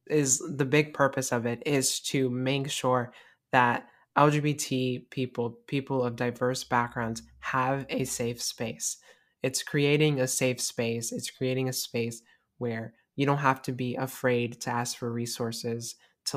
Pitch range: 125-135 Hz